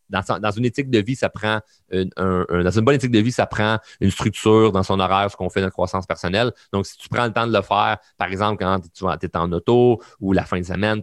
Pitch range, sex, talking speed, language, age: 95-130 Hz, male, 285 wpm, French, 30-49